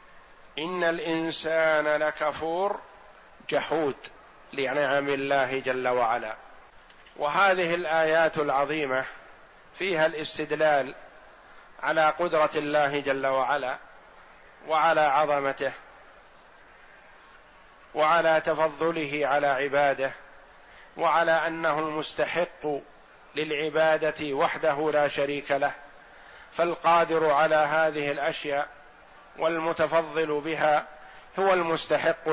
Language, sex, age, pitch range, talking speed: Arabic, male, 50-69, 145-160 Hz, 75 wpm